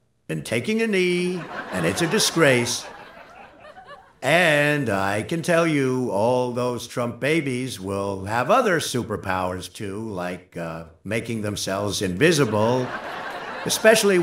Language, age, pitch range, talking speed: English, 60-79, 105-160 Hz, 120 wpm